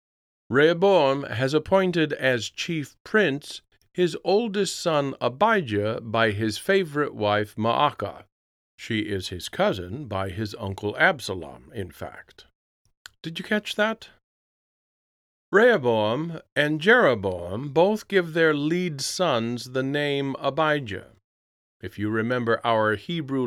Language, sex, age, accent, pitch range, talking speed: English, male, 50-69, American, 105-155 Hz, 115 wpm